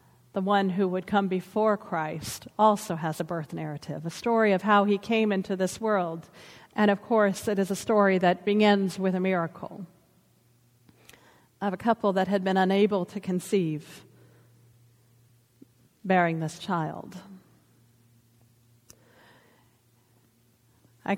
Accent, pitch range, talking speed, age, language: American, 175-210 Hz, 130 wpm, 40-59, English